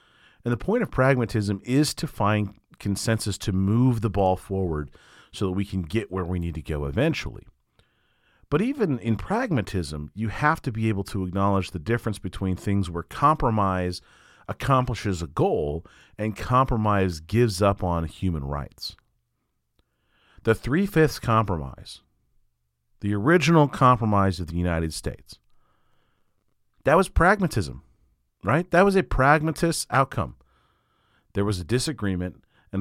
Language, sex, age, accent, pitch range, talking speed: English, male, 40-59, American, 90-130 Hz, 140 wpm